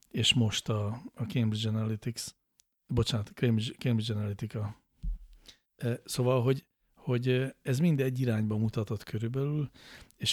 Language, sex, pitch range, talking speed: English, male, 110-120 Hz, 110 wpm